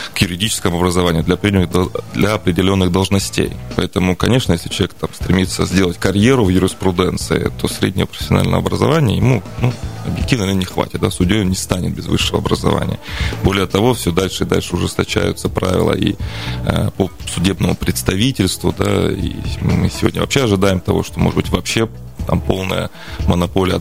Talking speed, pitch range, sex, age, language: 155 wpm, 90-105 Hz, male, 20-39, Russian